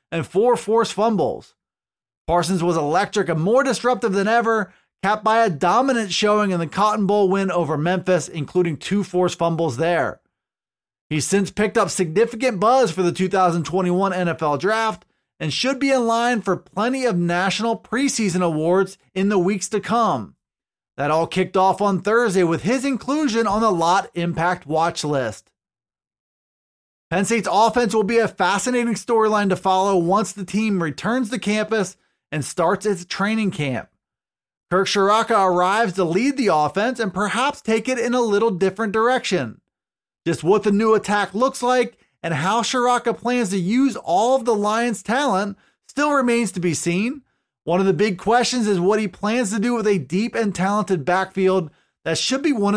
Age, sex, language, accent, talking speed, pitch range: 30-49, male, English, American, 175 wpm, 180-230 Hz